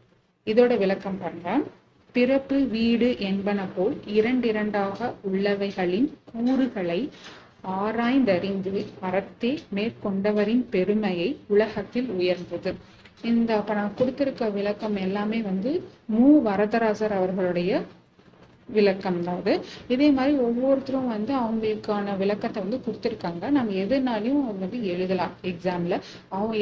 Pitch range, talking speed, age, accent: 190-235 Hz, 90 wpm, 30-49, native